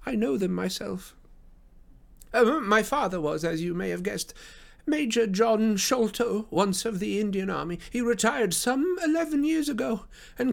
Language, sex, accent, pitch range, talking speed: English, male, British, 205-265 Hz, 160 wpm